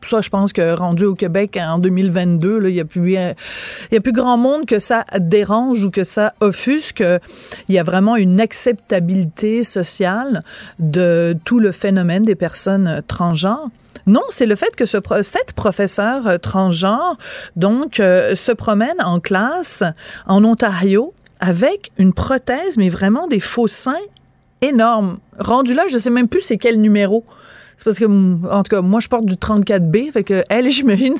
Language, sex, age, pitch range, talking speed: French, female, 30-49, 190-245 Hz, 165 wpm